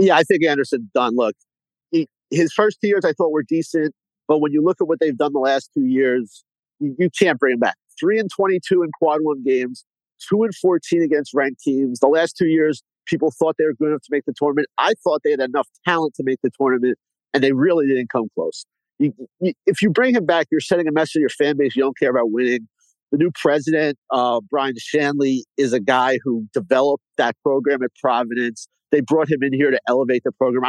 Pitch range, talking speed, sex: 135-165 Hz, 235 wpm, male